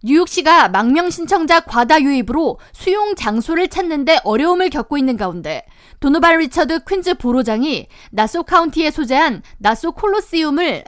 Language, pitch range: Korean, 245-340 Hz